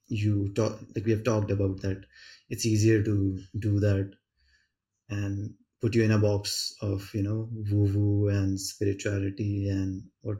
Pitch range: 100-115 Hz